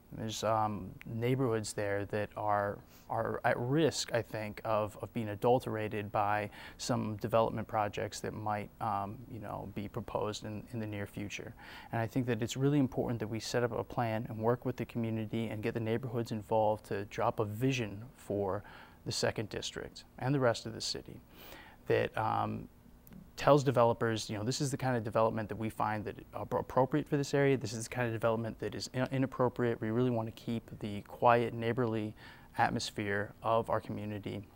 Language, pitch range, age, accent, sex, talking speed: English, 105-120 Hz, 20-39, American, male, 190 wpm